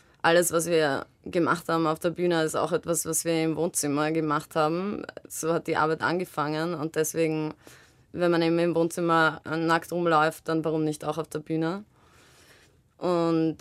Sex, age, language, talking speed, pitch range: female, 20-39, German, 170 wpm, 160-185 Hz